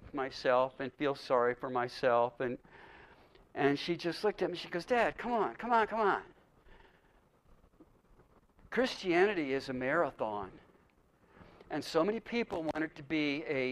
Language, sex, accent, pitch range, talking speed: English, male, American, 135-195 Hz, 155 wpm